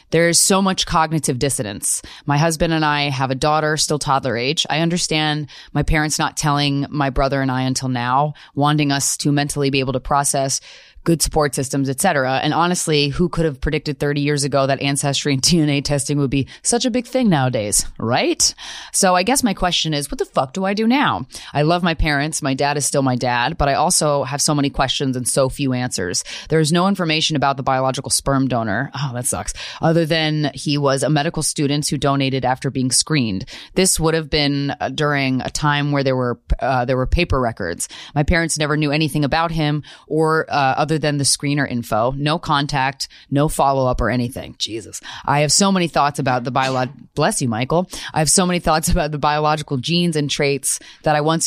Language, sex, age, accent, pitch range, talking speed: English, female, 30-49, American, 135-160 Hz, 210 wpm